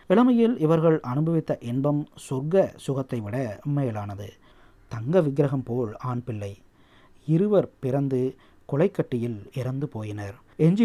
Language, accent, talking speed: Tamil, native, 105 wpm